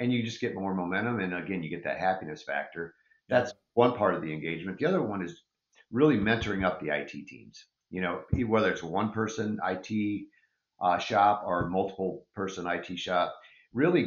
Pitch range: 85-105 Hz